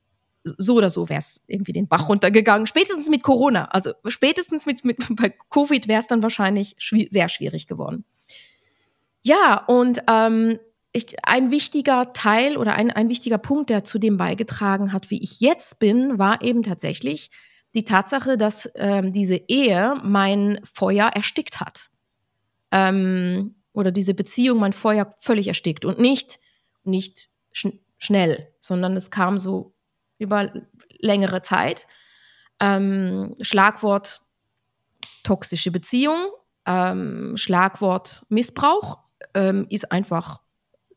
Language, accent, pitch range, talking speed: German, German, 190-235 Hz, 130 wpm